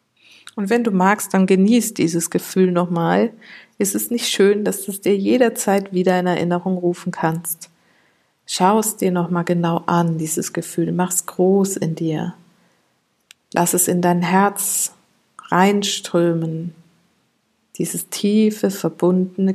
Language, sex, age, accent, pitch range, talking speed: German, female, 50-69, German, 170-195 Hz, 140 wpm